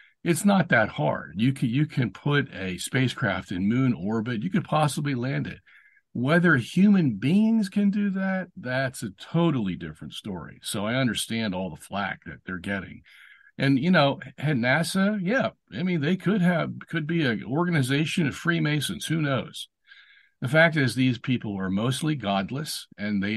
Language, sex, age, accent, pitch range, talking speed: English, male, 50-69, American, 115-165 Hz, 170 wpm